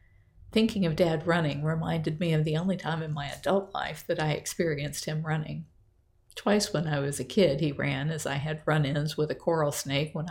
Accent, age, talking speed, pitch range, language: American, 50-69, 210 wpm, 145-170 Hz, English